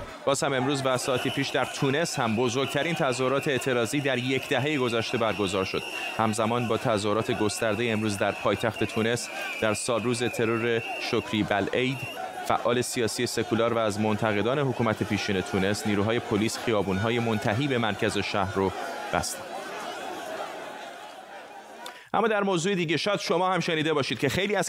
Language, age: Persian, 30-49